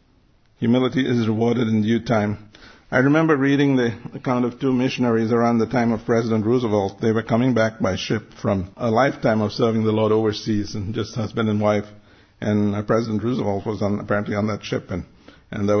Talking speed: 195 wpm